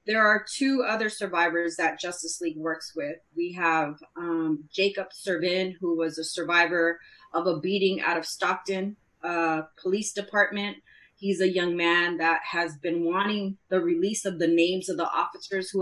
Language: English